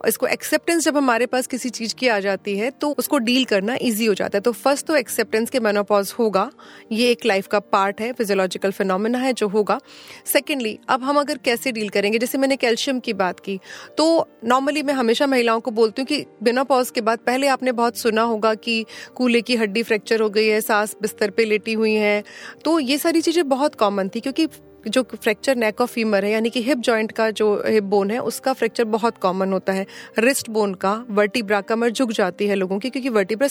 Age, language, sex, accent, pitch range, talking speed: 30-49, Hindi, female, native, 205-255 Hz, 220 wpm